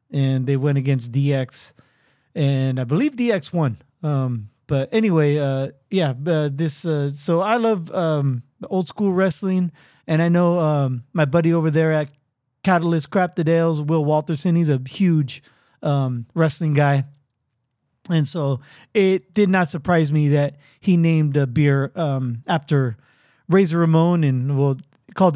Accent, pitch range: American, 140-190 Hz